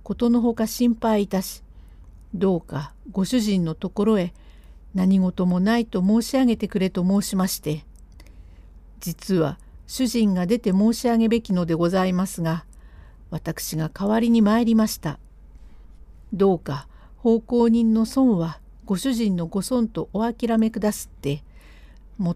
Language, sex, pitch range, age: Japanese, female, 145-225 Hz, 50-69